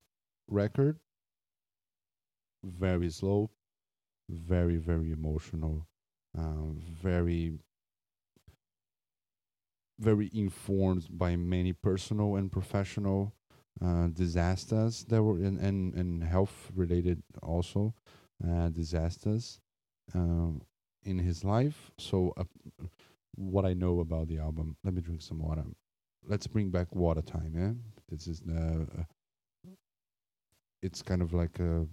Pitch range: 85-100 Hz